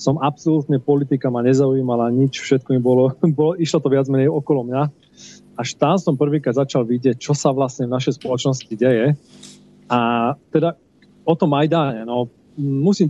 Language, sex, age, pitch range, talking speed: Slovak, male, 30-49, 125-150 Hz, 170 wpm